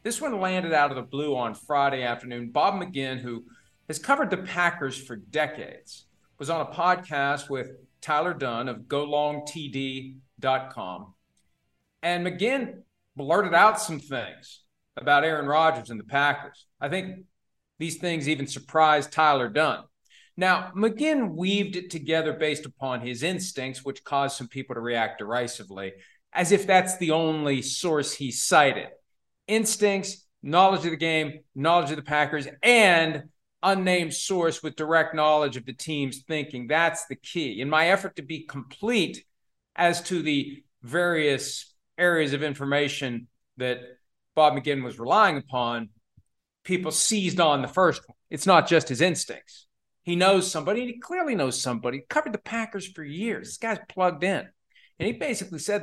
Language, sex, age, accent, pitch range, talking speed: English, male, 50-69, American, 135-180 Hz, 155 wpm